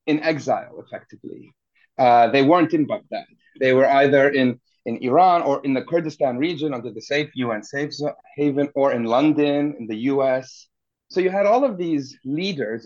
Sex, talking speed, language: male, 175 wpm, English